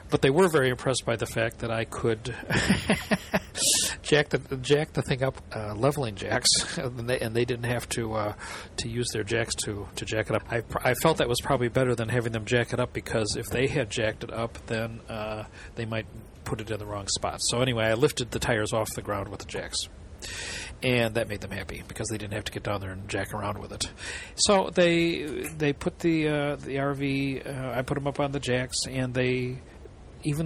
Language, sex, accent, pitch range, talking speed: English, male, American, 105-135 Hz, 230 wpm